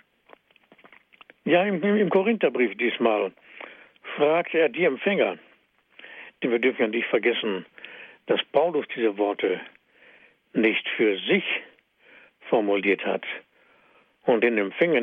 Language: German